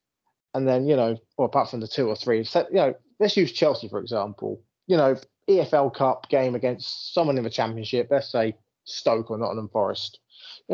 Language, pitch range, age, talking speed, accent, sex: English, 125-160 Hz, 20-39, 195 wpm, British, male